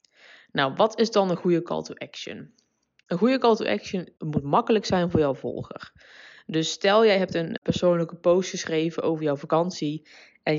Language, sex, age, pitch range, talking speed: Dutch, female, 20-39, 155-210 Hz, 180 wpm